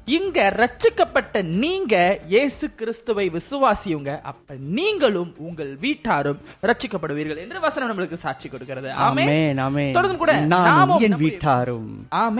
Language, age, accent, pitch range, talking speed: Tamil, 20-39, native, 150-225 Hz, 85 wpm